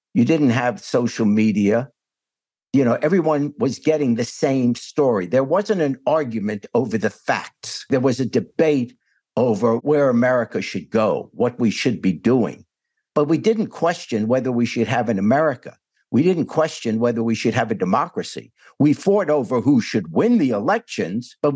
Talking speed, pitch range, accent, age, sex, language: 175 wpm, 115-150 Hz, American, 60-79, male, English